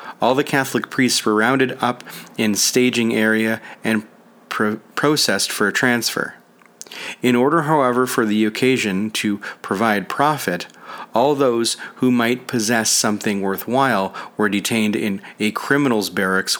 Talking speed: 135 wpm